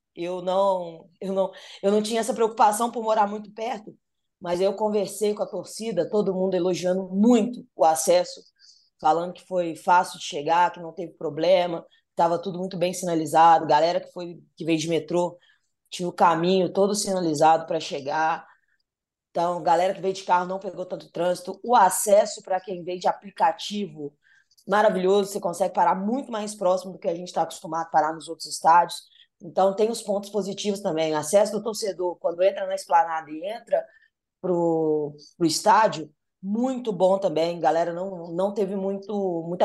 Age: 20-39